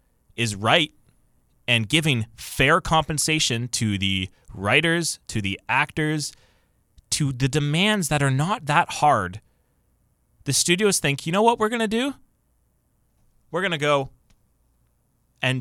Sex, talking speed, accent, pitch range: male, 135 wpm, American, 110-150 Hz